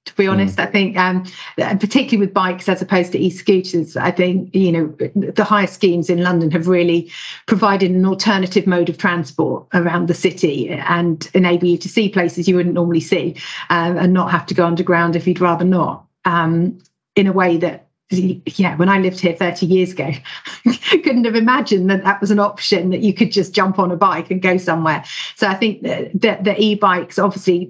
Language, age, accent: English, 40-59, British